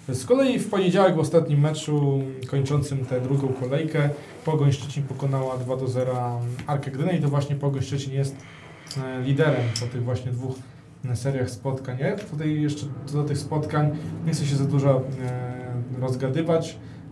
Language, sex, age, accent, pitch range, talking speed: Polish, male, 20-39, native, 135-155 Hz, 155 wpm